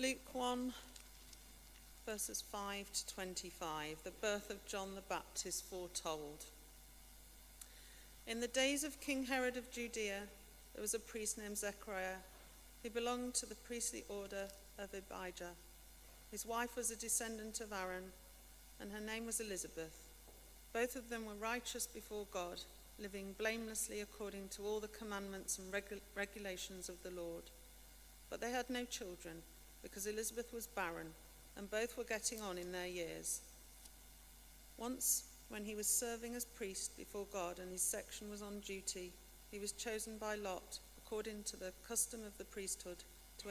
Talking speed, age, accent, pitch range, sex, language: 155 wpm, 40-59, British, 175-220 Hz, female, English